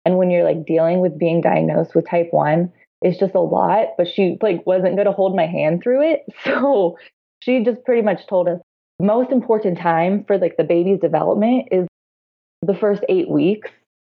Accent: American